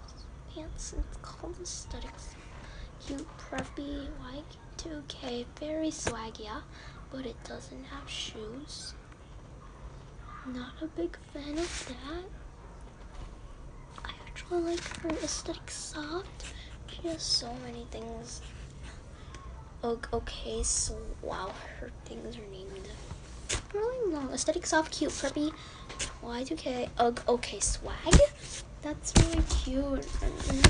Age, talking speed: 10-29, 110 wpm